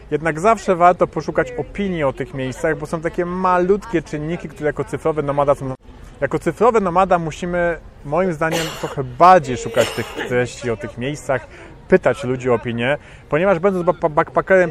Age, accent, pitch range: 30-49, native, 125-170 Hz